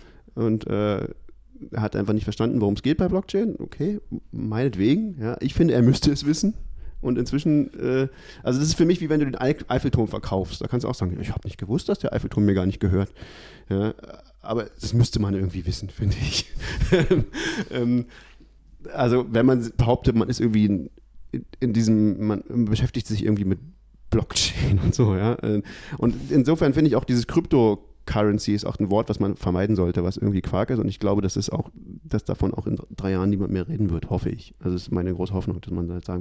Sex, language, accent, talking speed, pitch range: male, German, German, 210 wpm, 95-125 Hz